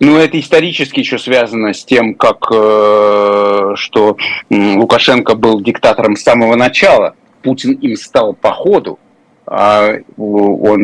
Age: 30-49